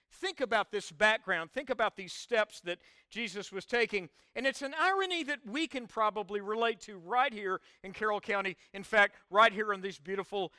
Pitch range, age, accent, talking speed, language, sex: 175-230 Hz, 50-69, American, 195 wpm, English, male